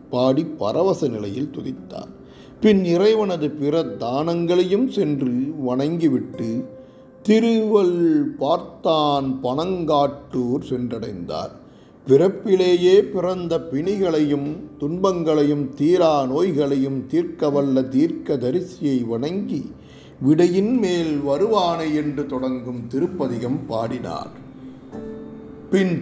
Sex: male